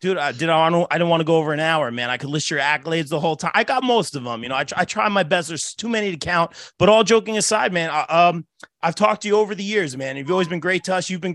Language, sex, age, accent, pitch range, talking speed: English, male, 30-49, American, 155-190 Hz, 305 wpm